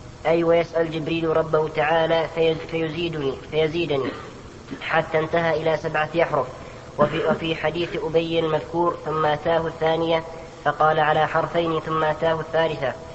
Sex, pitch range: female, 155-165 Hz